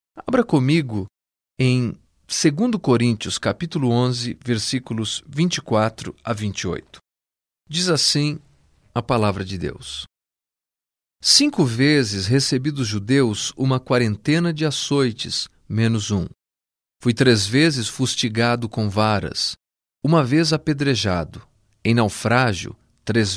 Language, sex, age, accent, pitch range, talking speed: Portuguese, male, 40-59, Brazilian, 105-145 Hz, 105 wpm